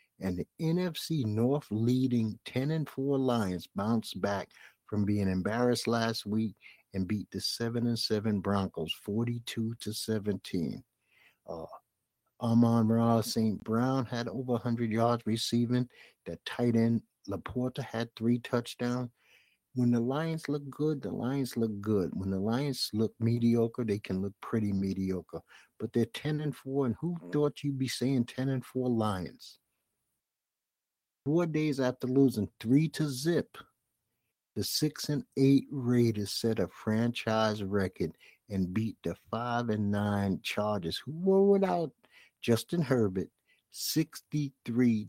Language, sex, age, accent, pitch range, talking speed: English, male, 60-79, American, 105-135 Hz, 140 wpm